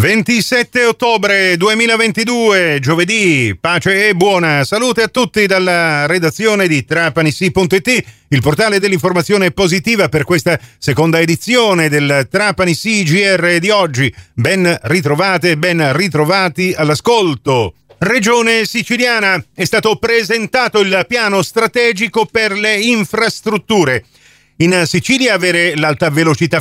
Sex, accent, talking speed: male, native, 110 wpm